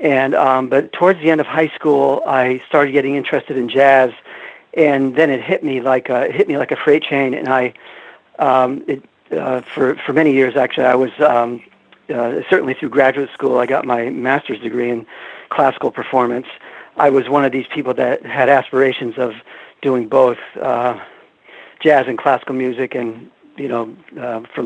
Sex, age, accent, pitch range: male, 50-69, American, 130-150 Hz